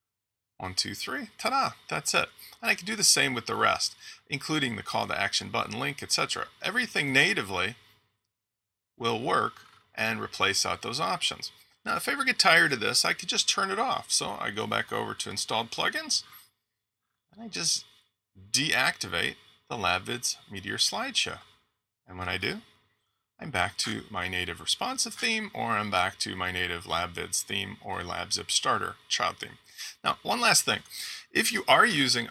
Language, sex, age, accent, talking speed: English, male, 30-49, American, 175 wpm